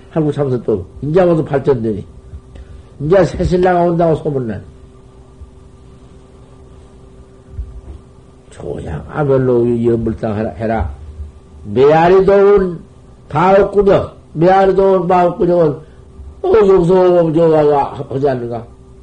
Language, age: Korean, 50-69